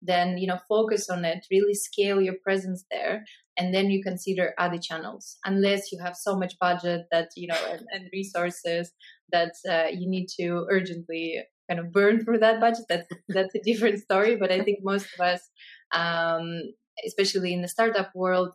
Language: English